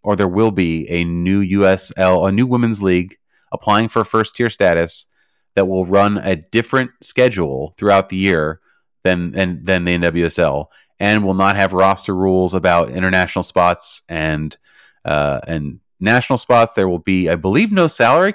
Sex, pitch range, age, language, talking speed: male, 90-115 Hz, 30-49, English, 165 wpm